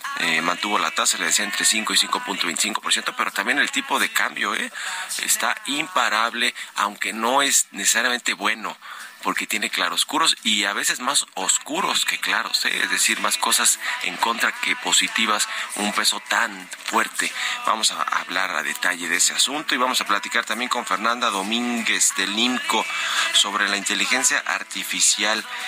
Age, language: 40-59, Spanish